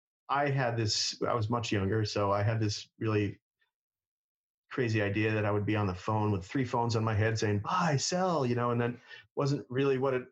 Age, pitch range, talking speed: 30-49, 105-130 Hz, 220 wpm